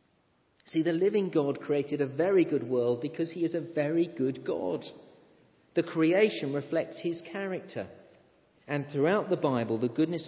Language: English